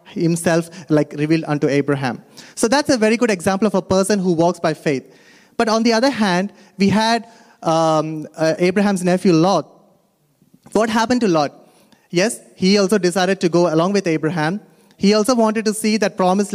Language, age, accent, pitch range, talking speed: Malayalam, 30-49, native, 170-220 Hz, 180 wpm